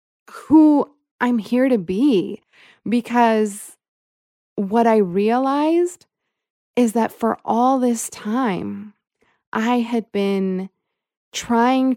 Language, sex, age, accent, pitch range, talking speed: English, female, 20-39, American, 195-240 Hz, 95 wpm